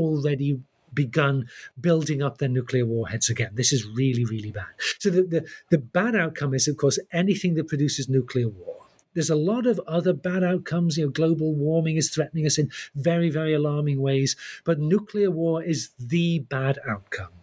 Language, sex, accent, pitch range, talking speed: English, male, British, 135-180 Hz, 185 wpm